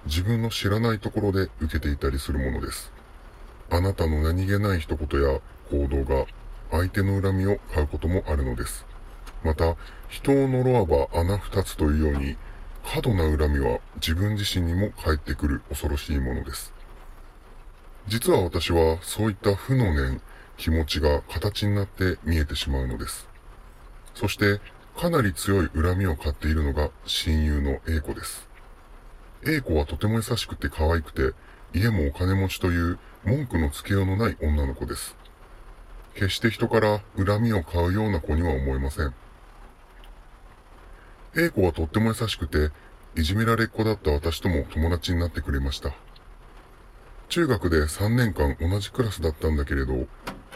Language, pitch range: Japanese, 75-100 Hz